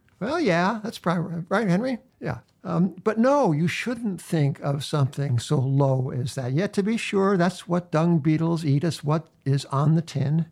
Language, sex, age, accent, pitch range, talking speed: English, male, 60-79, American, 150-190 Hz, 205 wpm